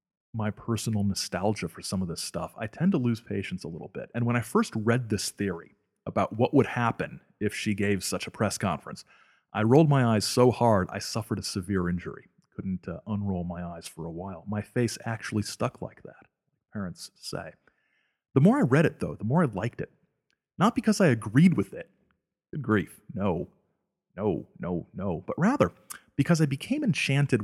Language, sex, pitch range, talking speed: English, male, 100-135 Hz, 195 wpm